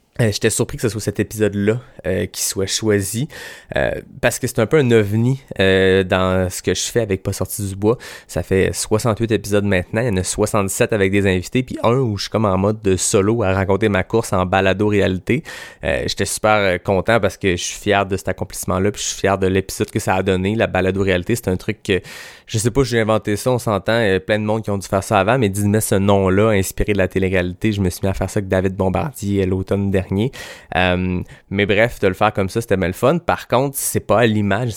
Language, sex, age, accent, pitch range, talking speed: French, male, 20-39, Canadian, 95-110 Hz, 250 wpm